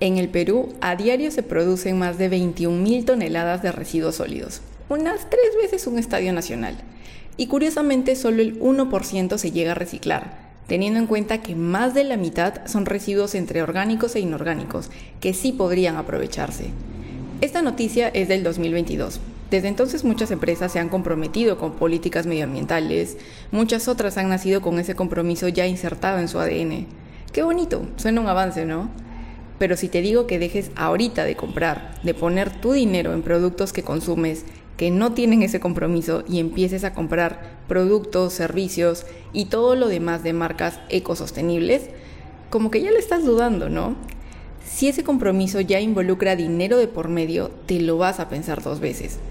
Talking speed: 170 wpm